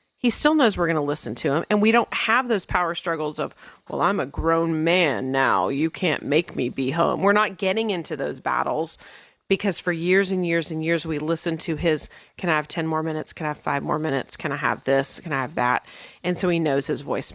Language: English